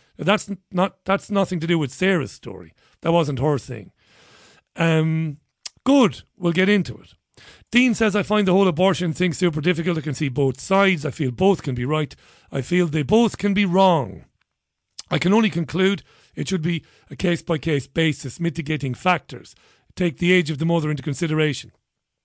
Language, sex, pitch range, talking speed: English, male, 145-190 Hz, 180 wpm